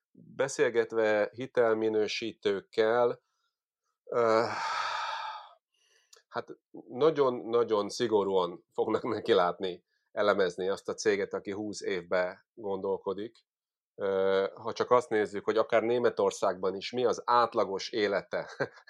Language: Hungarian